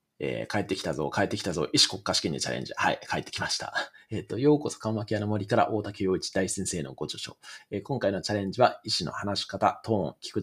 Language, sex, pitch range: Japanese, male, 95-150 Hz